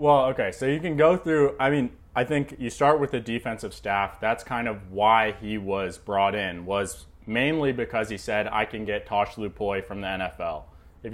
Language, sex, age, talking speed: English, male, 20-39, 210 wpm